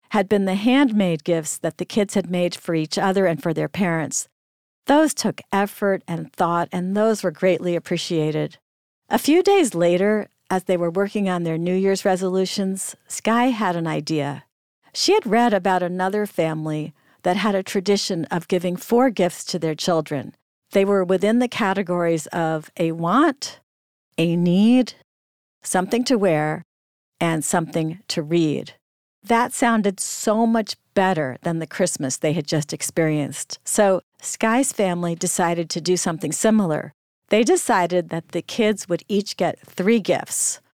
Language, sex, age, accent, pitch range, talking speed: English, female, 50-69, American, 165-205 Hz, 160 wpm